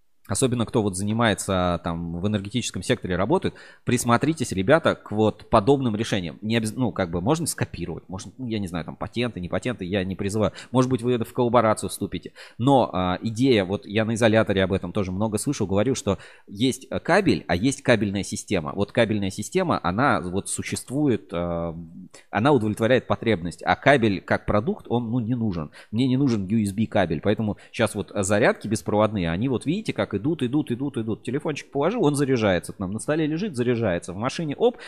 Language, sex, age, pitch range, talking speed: Russian, male, 20-39, 95-125 Hz, 185 wpm